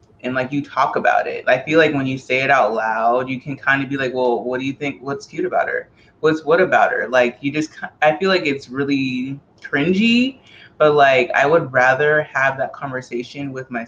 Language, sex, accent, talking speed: English, female, American, 230 wpm